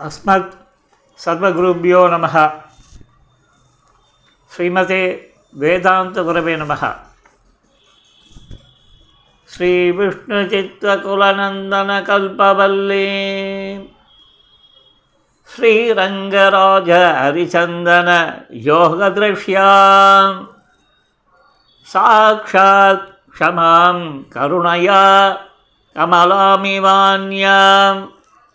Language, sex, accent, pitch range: Tamil, male, native, 175-195 Hz